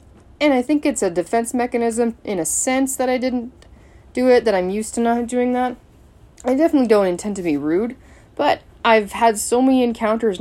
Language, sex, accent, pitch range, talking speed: English, female, American, 165-225 Hz, 200 wpm